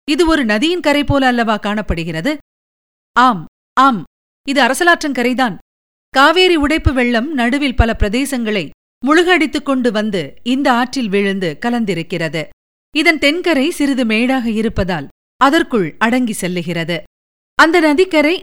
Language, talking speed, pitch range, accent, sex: Tamil, 105 wpm, 205-295 Hz, native, female